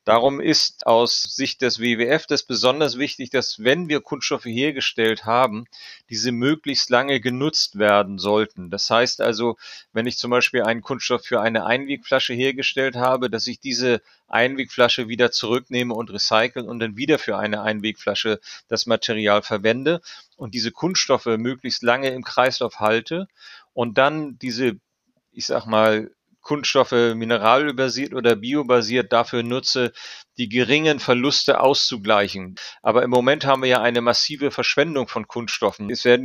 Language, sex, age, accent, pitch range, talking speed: German, male, 30-49, German, 115-135 Hz, 145 wpm